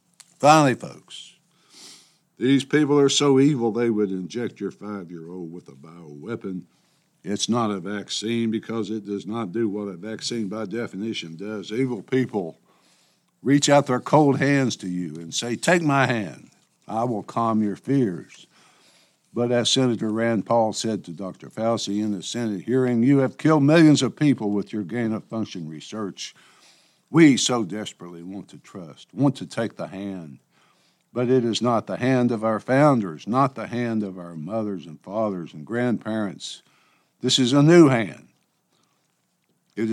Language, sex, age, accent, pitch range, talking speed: English, male, 60-79, American, 100-125 Hz, 160 wpm